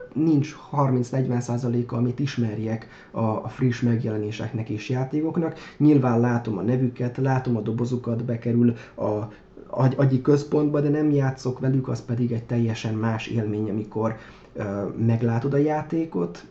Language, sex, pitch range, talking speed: Hungarian, male, 120-140 Hz, 125 wpm